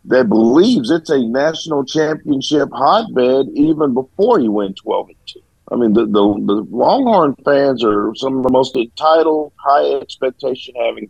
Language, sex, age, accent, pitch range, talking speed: English, male, 50-69, American, 115-175 Hz, 150 wpm